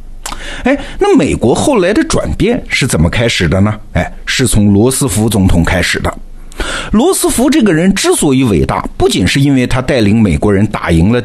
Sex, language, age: male, Chinese, 50-69